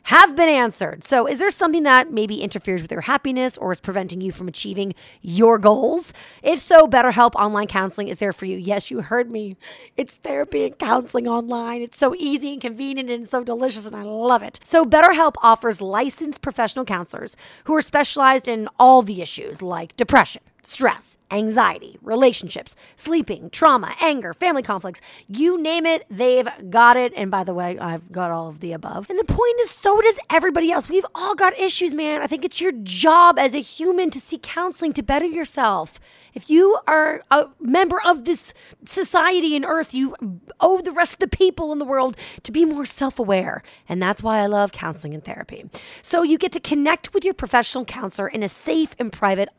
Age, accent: 30-49, American